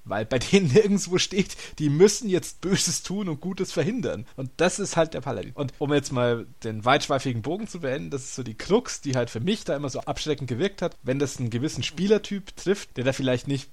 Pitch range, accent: 120-165 Hz, German